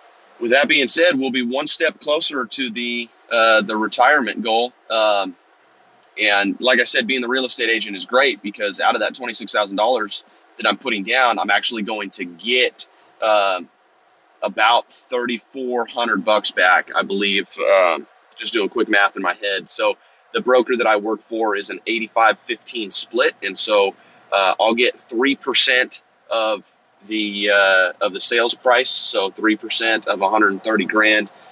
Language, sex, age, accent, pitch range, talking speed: English, male, 30-49, American, 105-130 Hz, 165 wpm